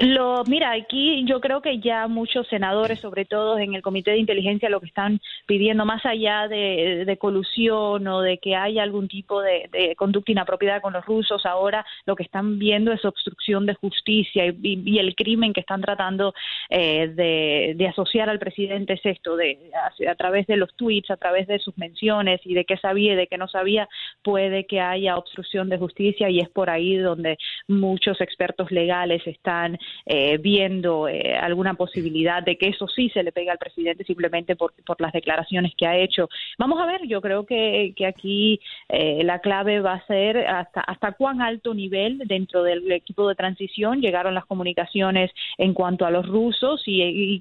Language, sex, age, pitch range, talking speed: Spanish, female, 20-39, 180-210 Hz, 195 wpm